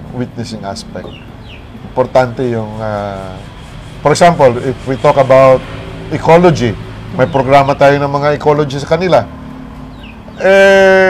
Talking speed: 115 wpm